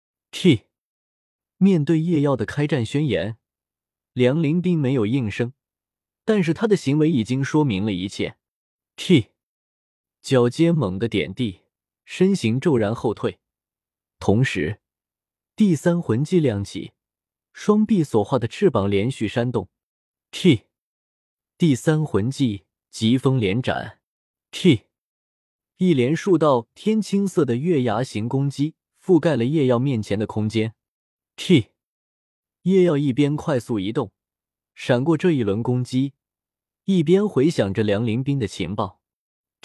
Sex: male